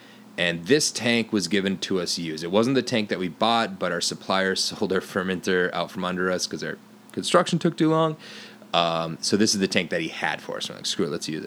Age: 30-49